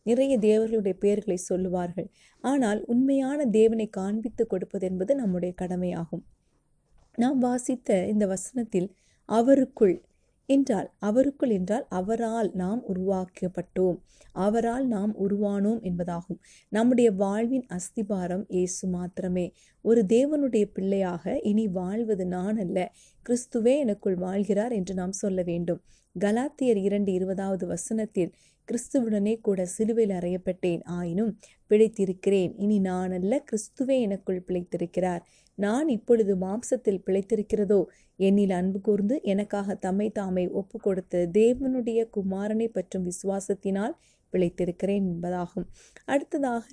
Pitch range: 185-230 Hz